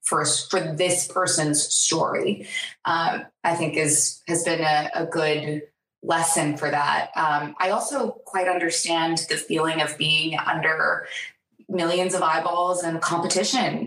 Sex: female